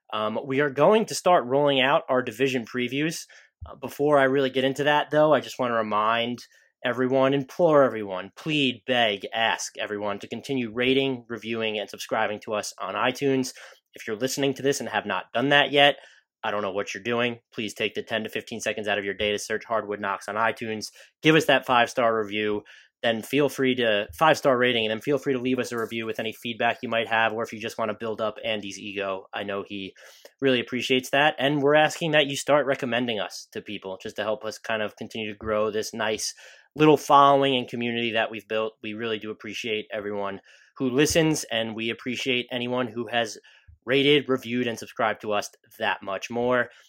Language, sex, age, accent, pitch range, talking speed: English, male, 20-39, American, 110-135 Hz, 215 wpm